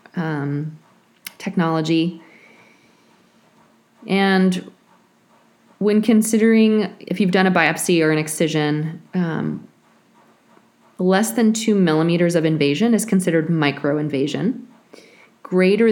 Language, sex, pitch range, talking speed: English, female, 150-195 Hz, 95 wpm